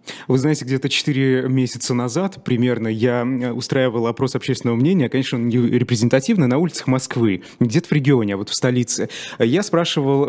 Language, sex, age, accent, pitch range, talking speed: Russian, male, 20-39, native, 120-155 Hz, 165 wpm